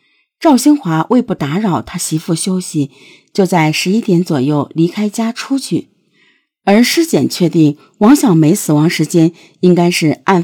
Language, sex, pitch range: Chinese, female, 150-210 Hz